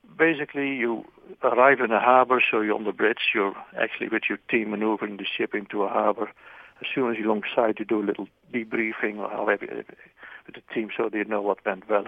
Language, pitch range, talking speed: English, 105-120 Hz, 215 wpm